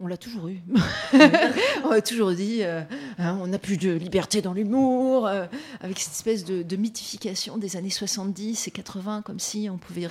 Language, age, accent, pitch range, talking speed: French, 40-59, French, 175-220 Hz, 195 wpm